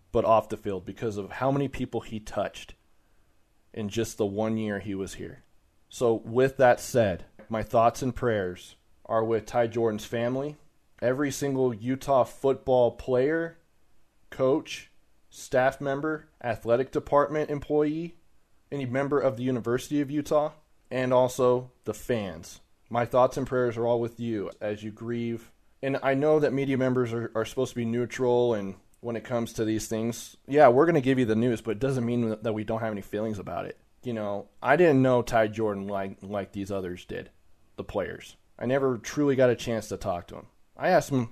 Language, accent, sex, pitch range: English, American, male, 105-130 Hz